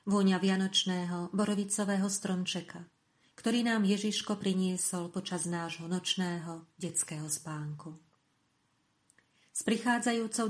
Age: 40-59